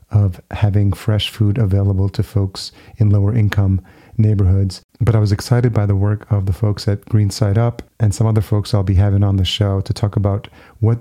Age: 30-49